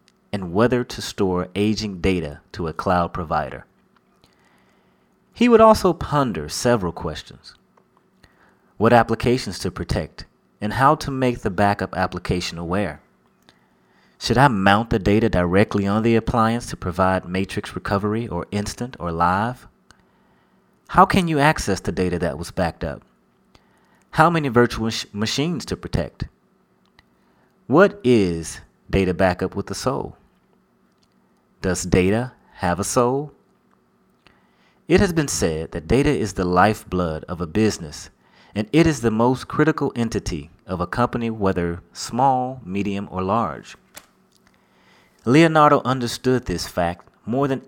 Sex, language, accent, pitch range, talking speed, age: male, English, American, 90-125 Hz, 135 wpm, 30-49